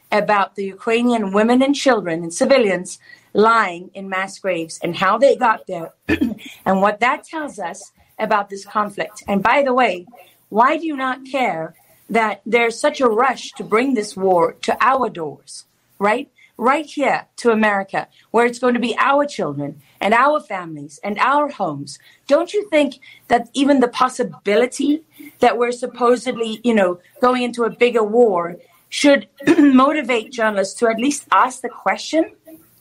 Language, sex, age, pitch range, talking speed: English, female, 40-59, 205-265 Hz, 165 wpm